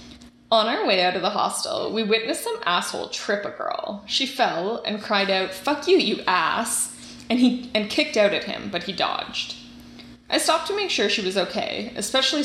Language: English